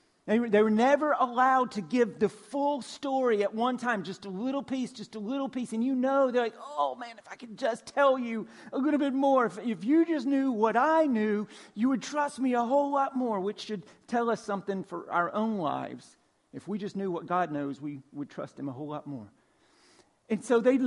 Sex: male